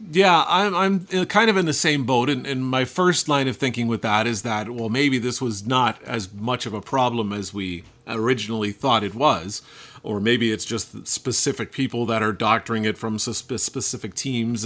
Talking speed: 200 wpm